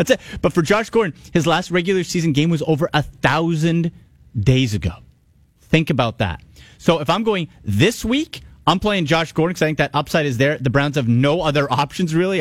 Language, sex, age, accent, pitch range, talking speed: English, male, 30-49, American, 120-155 Hz, 215 wpm